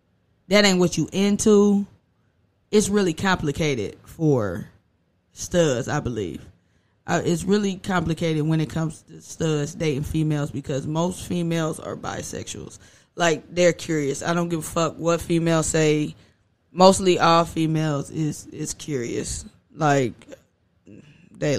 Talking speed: 130 wpm